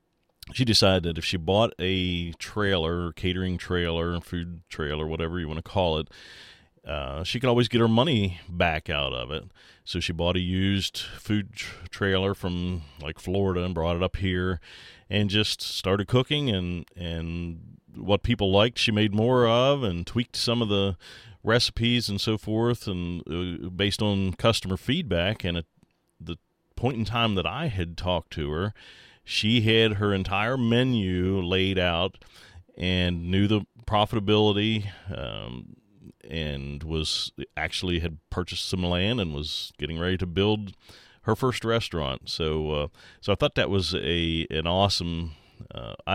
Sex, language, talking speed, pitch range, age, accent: male, English, 160 wpm, 85-105 Hz, 30-49, American